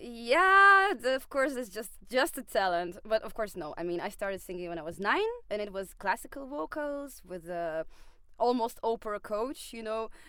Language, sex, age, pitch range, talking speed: English, female, 20-39, 185-265 Hz, 205 wpm